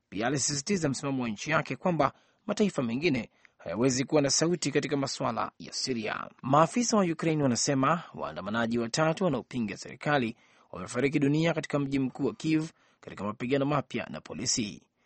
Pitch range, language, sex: 125-160 Hz, Swahili, male